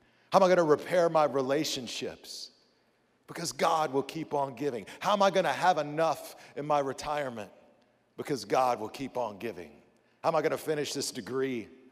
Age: 50-69